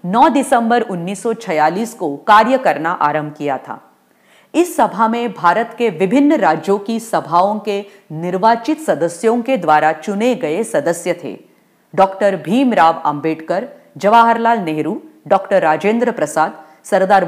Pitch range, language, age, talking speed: 170-255 Hz, English, 40-59, 125 wpm